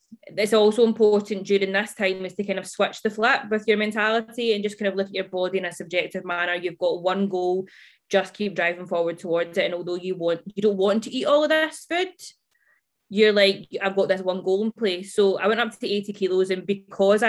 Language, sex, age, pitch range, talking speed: English, female, 20-39, 180-205 Hz, 240 wpm